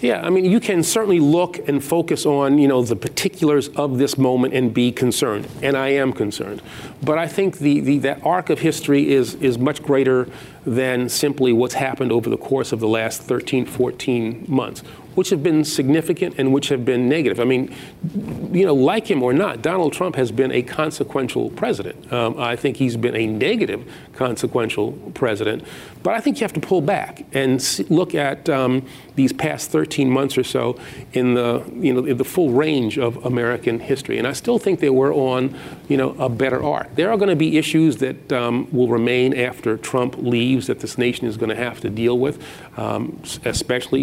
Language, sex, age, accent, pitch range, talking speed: English, male, 40-59, American, 120-150 Hz, 205 wpm